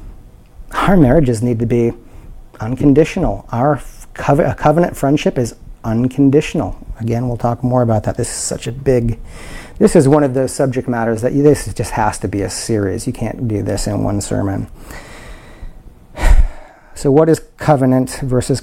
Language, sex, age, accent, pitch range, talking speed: English, male, 40-59, American, 120-180 Hz, 160 wpm